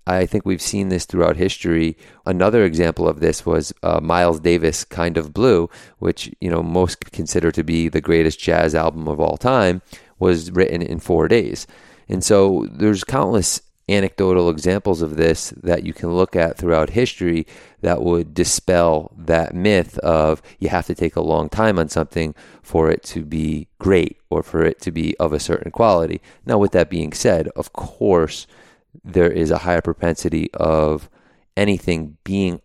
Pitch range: 80-90 Hz